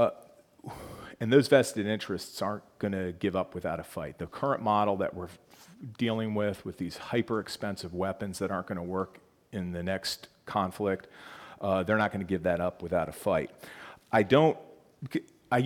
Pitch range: 95-120 Hz